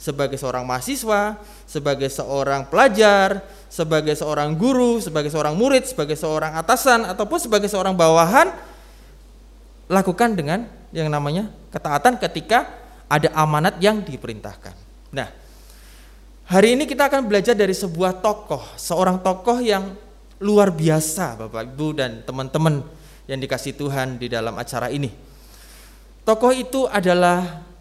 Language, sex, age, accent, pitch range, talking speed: Indonesian, male, 20-39, native, 135-210 Hz, 125 wpm